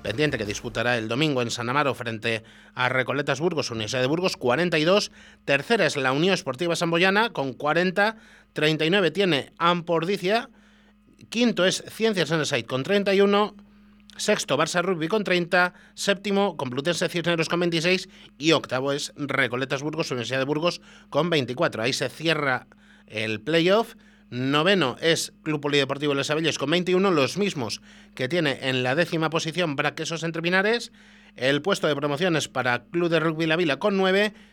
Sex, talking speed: male, 160 wpm